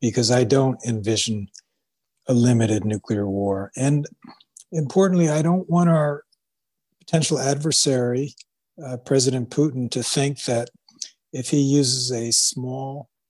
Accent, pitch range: American, 110-135 Hz